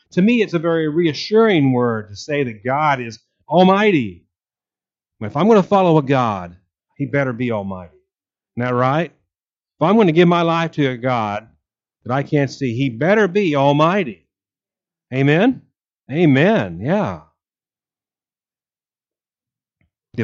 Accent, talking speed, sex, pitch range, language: American, 145 wpm, male, 120-165 Hz, English